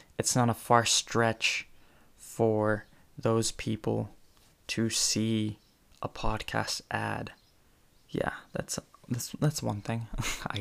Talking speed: 115 wpm